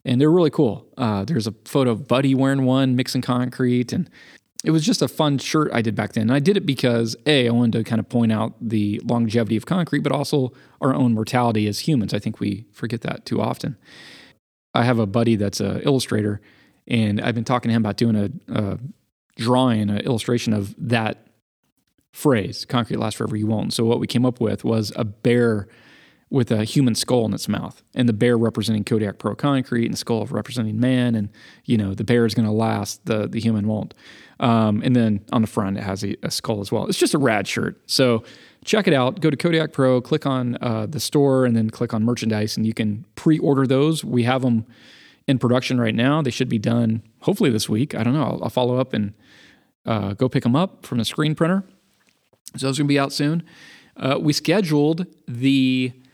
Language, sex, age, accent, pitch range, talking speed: English, male, 20-39, American, 110-135 Hz, 220 wpm